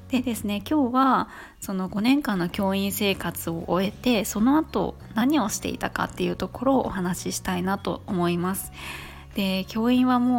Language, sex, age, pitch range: Japanese, female, 20-39, 185-245 Hz